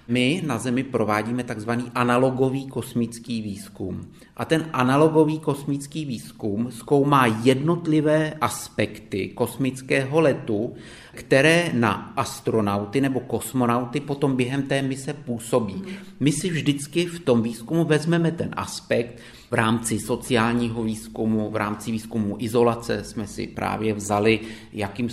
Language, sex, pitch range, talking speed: Czech, male, 110-130 Hz, 120 wpm